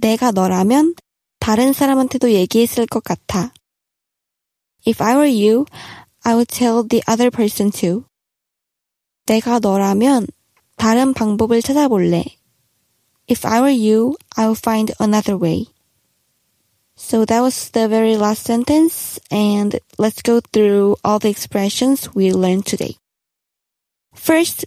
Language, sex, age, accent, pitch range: Korean, female, 20-39, native, 210-265 Hz